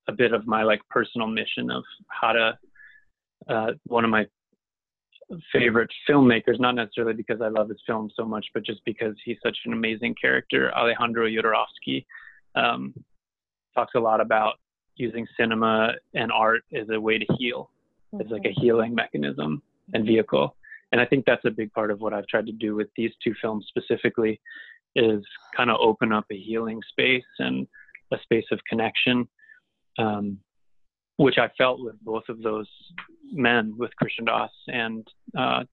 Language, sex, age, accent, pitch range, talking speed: English, male, 20-39, American, 105-120 Hz, 170 wpm